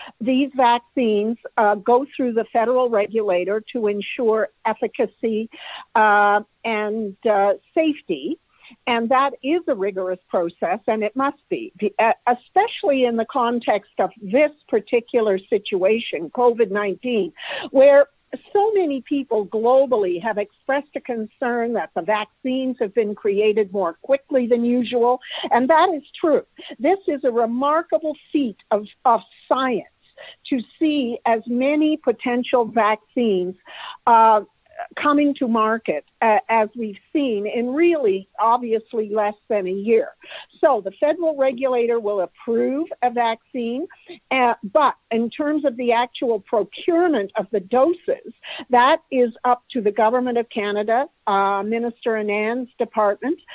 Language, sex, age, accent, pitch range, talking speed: English, female, 50-69, American, 215-275 Hz, 130 wpm